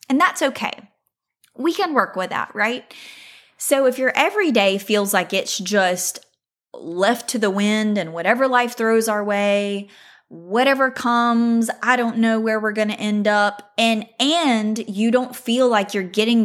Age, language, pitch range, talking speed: 20-39, English, 185-230 Hz, 170 wpm